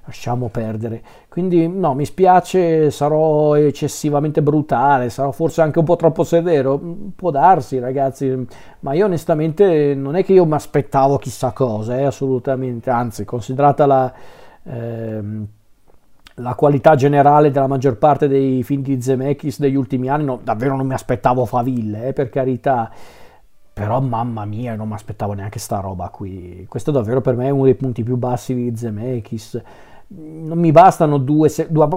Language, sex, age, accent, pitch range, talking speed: Italian, male, 40-59, native, 125-150 Hz, 160 wpm